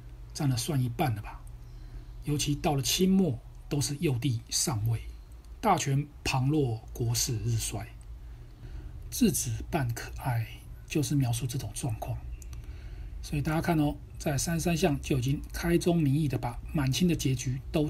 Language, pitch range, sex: Chinese, 115-155 Hz, male